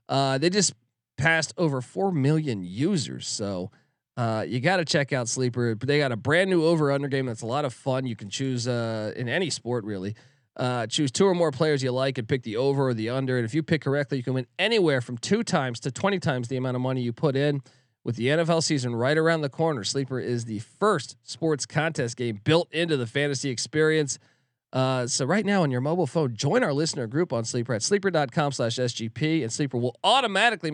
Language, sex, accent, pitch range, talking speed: English, male, American, 125-165 Hz, 230 wpm